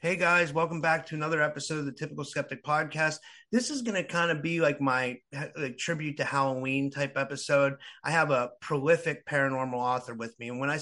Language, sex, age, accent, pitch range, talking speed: English, male, 30-49, American, 135-155 Hz, 205 wpm